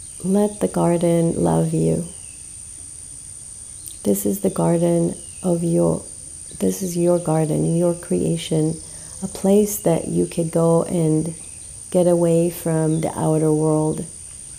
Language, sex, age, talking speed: English, female, 40-59, 125 wpm